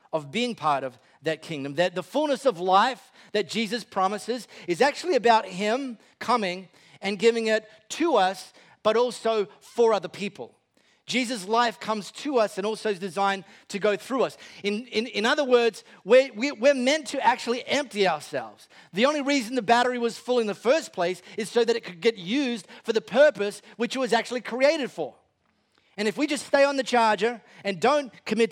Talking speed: 195 wpm